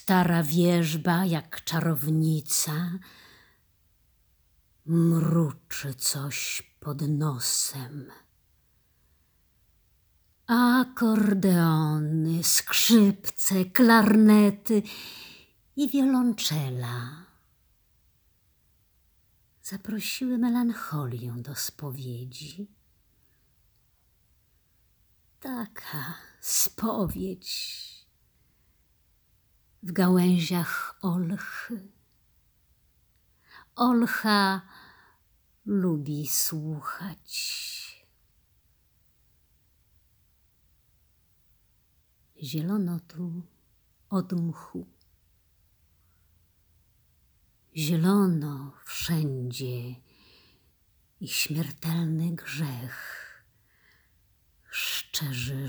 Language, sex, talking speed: Polish, female, 35 wpm